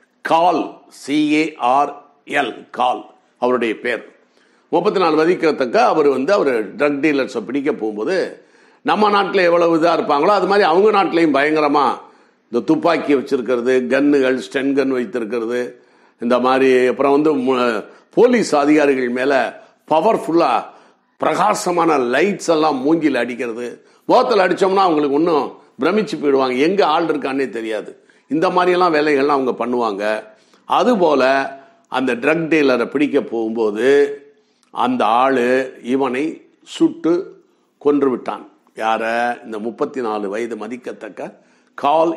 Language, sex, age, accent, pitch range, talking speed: Tamil, male, 50-69, native, 130-205 Hz, 115 wpm